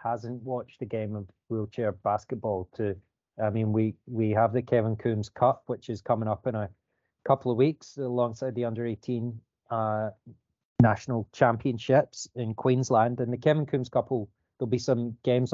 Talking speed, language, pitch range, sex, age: 175 wpm, English, 115-130 Hz, male, 20-39